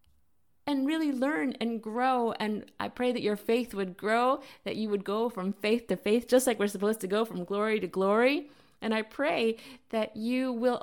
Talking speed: 205 wpm